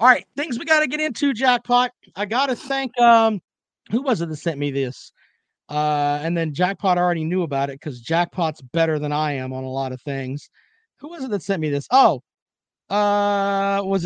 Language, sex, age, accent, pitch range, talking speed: English, male, 40-59, American, 165-230 Hz, 215 wpm